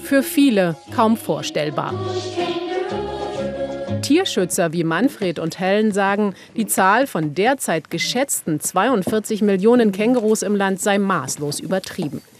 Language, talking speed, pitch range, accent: German, 110 wpm, 160-225 Hz, German